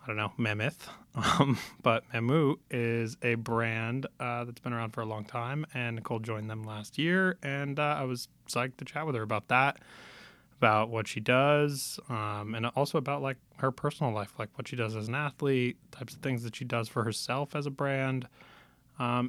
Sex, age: male, 20-39